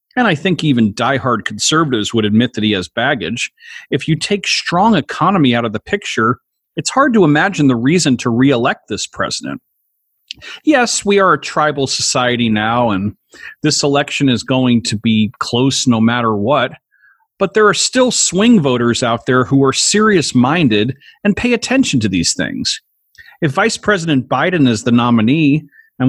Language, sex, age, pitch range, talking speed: English, male, 40-59, 120-165 Hz, 170 wpm